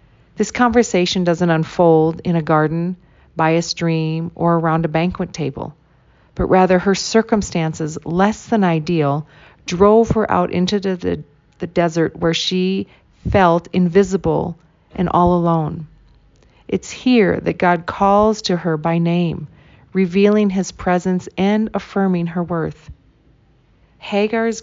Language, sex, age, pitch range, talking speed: English, female, 40-59, 165-195 Hz, 130 wpm